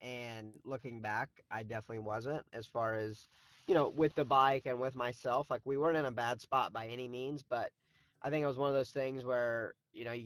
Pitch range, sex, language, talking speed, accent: 115-135 Hz, male, English, 235 wpm, American